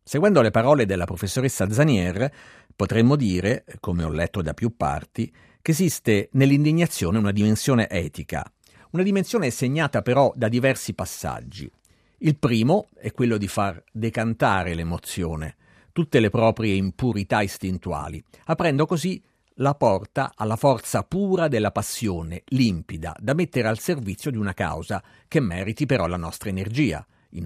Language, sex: Italian, male